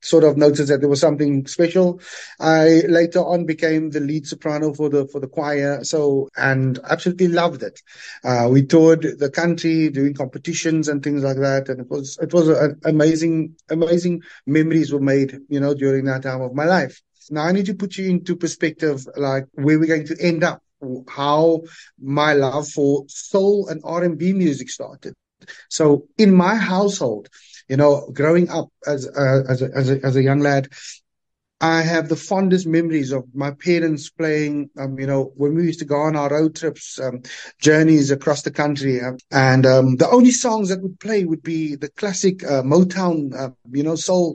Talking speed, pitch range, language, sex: 195 wpm, 140-170 Hz, English, male